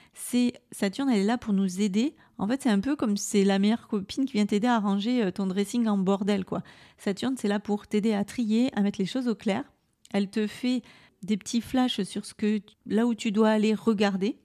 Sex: female